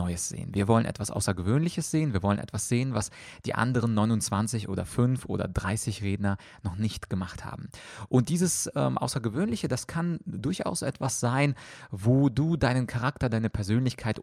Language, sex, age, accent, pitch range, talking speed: German, male, 30-49, German, 100-125 Hz, 165 wpm